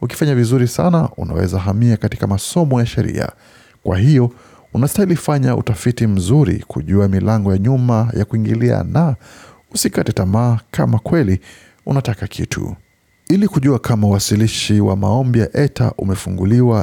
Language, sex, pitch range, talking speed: Swahili, male, 95-125 Hz, 130 wpm